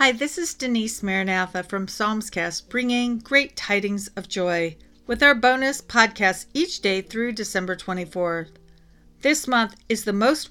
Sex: female